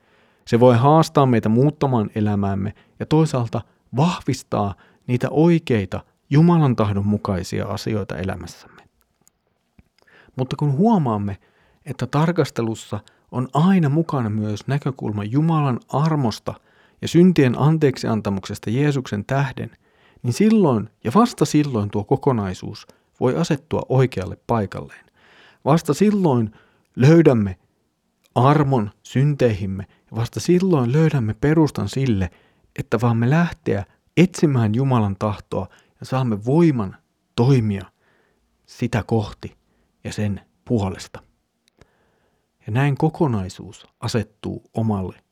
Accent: native